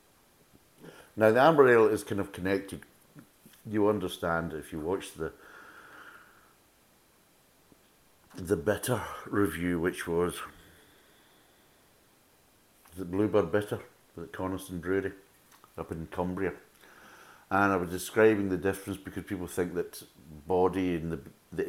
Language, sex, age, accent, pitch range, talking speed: English, male, 60-79, British, 75-95 Hz, 120 wpm